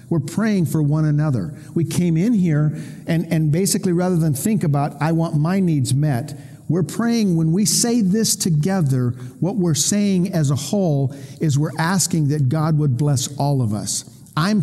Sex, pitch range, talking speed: male, 125-160 Hz, 185 wpm